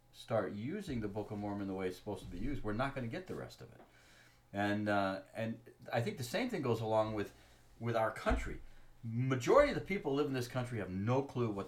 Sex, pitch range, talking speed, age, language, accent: male, 95-125 Hz, 250 wpm, 40-59, English, American